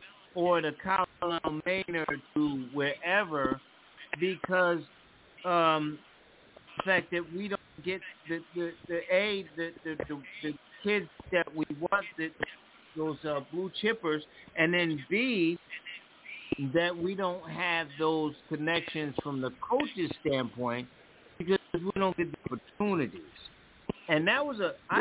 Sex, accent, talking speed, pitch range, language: male, American, 130 wpm, 150-190 Hz, English